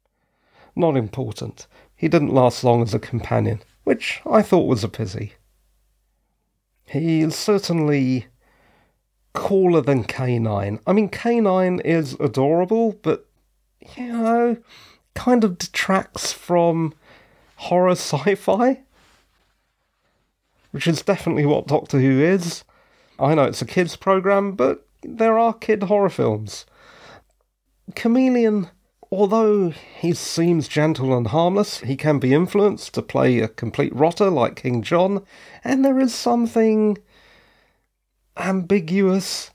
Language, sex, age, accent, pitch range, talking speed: English, male, 40-59, British, 140-200 Hz, 120 wpm